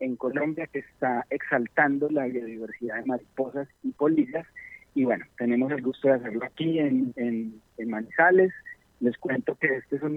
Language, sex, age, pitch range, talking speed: Spanish, male, 40-59, 120-145 Hz, 170 wpm